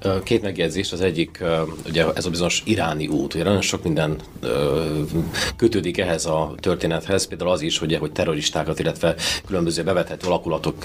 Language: Hungarian